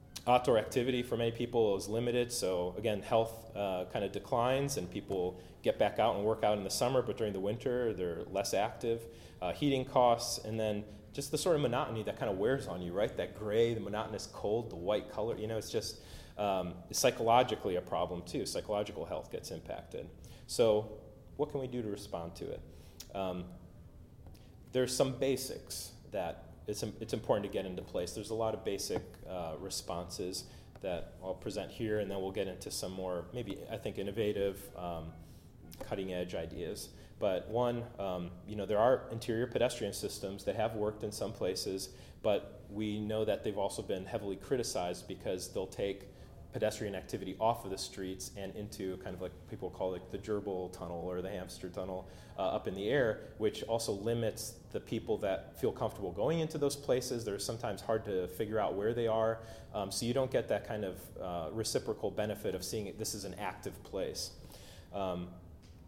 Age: 30-49